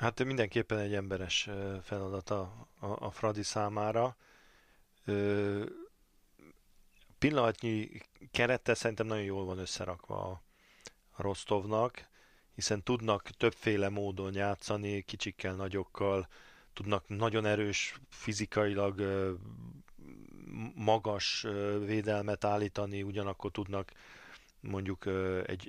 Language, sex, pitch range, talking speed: Hungarian, male, 95-110 Hz, 80 wpm